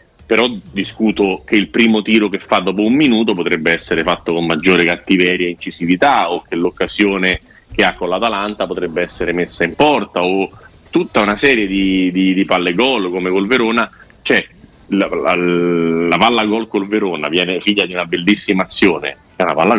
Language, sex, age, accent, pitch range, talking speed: Italian, male, 40-59, native, 95-110 Hz, 185 wpm